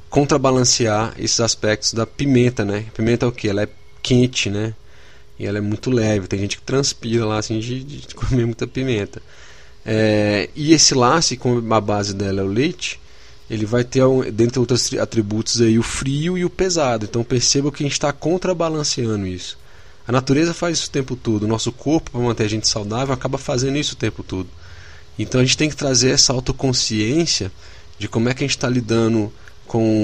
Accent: Brazilian